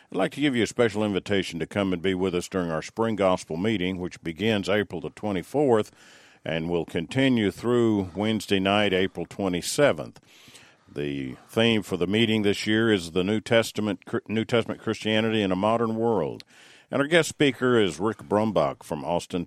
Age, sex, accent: 50-69, male, American